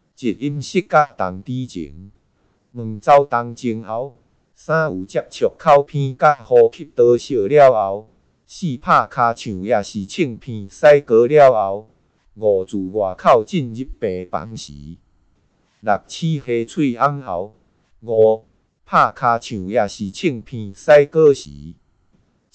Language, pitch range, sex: Chinese, 105-140 Hz, male